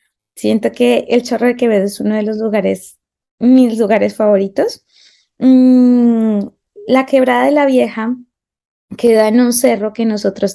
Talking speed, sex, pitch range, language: 150 wpm, female, 205-255 Hz, Portuguese